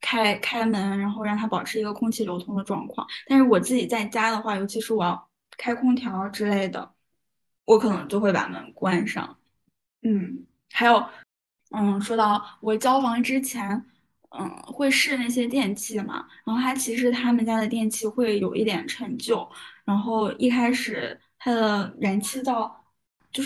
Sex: female